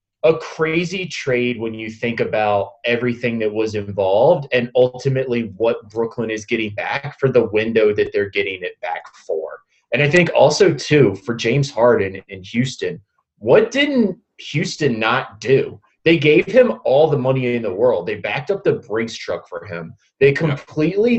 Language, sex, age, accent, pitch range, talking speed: English, male, 30-49, American, 115-160 Hz, 175 wpm